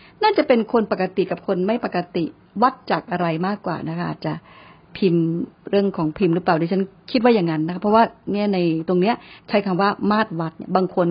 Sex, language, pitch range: female, Thai, 180-240 Hz